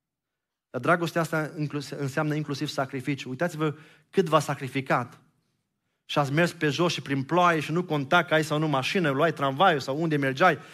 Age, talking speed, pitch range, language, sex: 30-49, 175 wpm, 135-160 Hz, Romanian, male